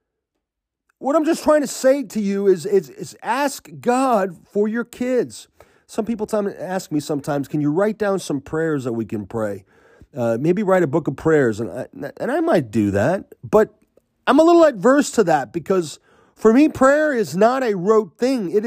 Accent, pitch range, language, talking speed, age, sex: American, 170-245 Hz, English, 205 wpm, 40-59, male